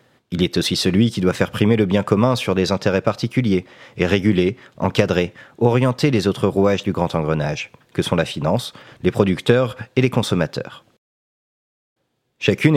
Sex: male